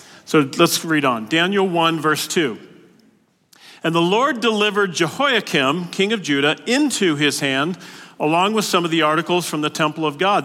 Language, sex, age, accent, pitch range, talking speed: English, male, 40-59, American, 140-205 Hz, 170 wpm